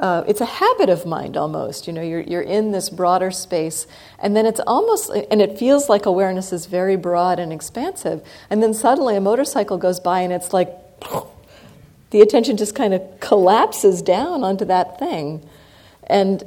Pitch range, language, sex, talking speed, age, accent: 175-220 Hz, English, female, 185 wpm, 50-69, American